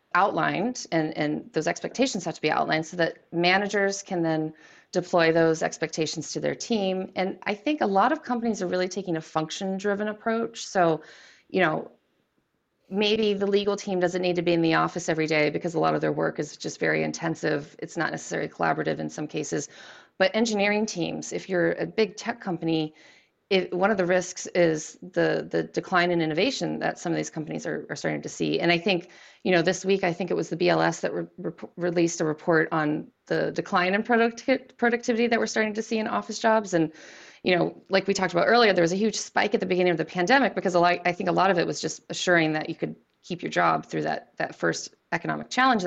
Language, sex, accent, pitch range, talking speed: English, female, American, 165-210 Hz, 225 wpm